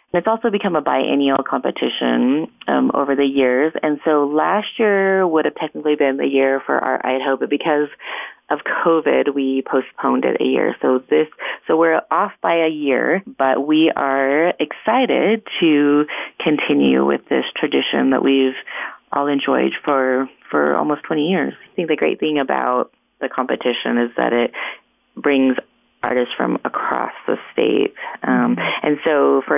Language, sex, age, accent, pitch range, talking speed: English, female, 30-49, American, 135-170 Hz, 160 wpm